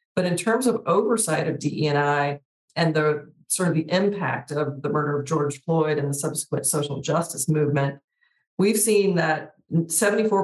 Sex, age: female, 40-59